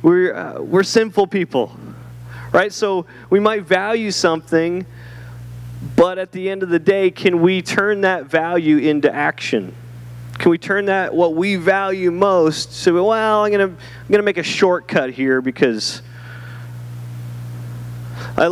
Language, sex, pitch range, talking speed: English, male, 120-180 Hz, 155 wpm